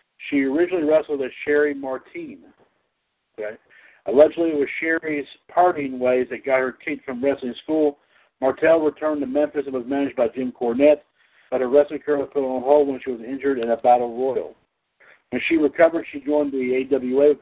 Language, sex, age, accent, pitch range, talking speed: English, male, 60-79, American, 135-155 Hz, 185 wpm